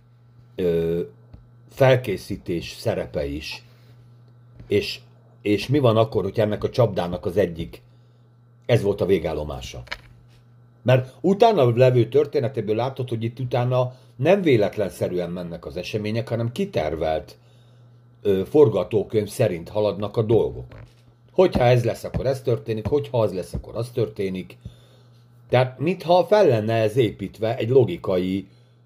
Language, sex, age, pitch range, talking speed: Hungarian, male, 50-69, 105-125 Hz, 125 wpm